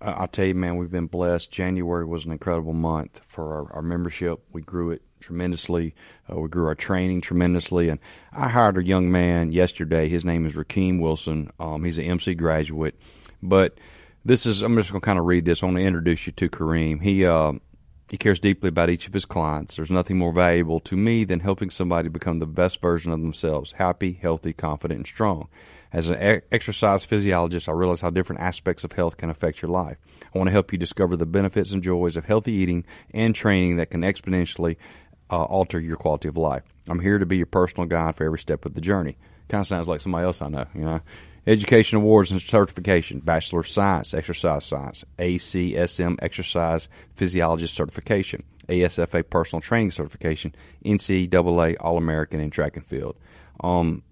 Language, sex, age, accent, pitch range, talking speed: English, male, 40-59, American, 80-95 Hz, 195 wpm